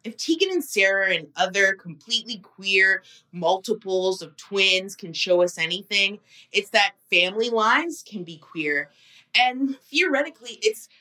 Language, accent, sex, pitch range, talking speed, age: English, American, female, 180-250 Hz, 135 wpm, 20-39